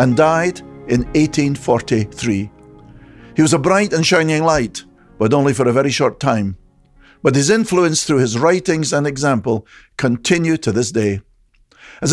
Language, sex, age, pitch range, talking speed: English, male, 50-69, 120-165 Hz, 155 wpm